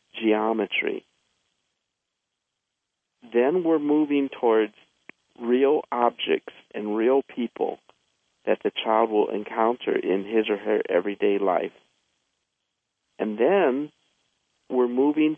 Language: English